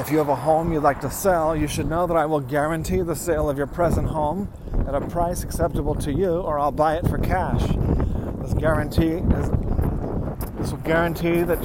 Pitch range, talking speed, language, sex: 115-160 Hz, 210 wpm, English, male